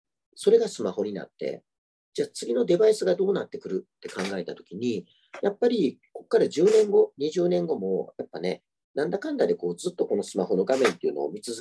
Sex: male